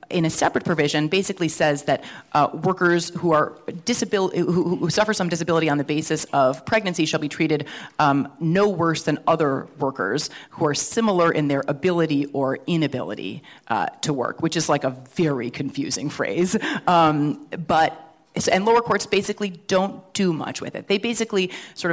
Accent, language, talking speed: American, English, 170 wpm